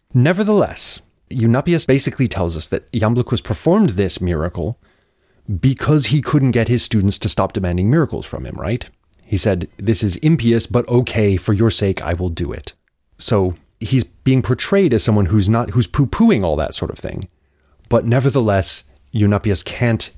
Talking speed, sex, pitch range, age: 165 wpm, male, 85-115 Hz, 30-49